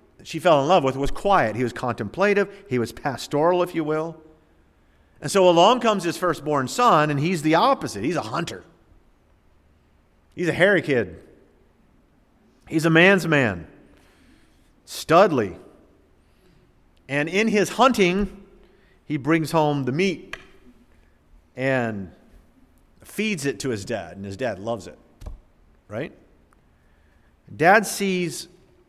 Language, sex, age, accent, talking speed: English, male, 50-69, American, 130 wpm